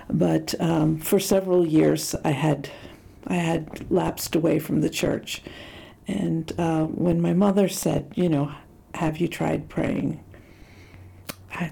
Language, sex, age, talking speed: English, female, 60-79, 140 wpm